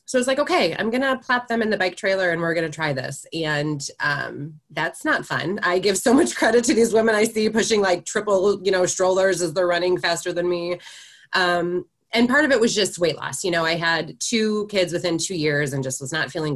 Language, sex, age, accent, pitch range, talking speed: English, female, 20-39, American, 160-210 Hz, 255 wpm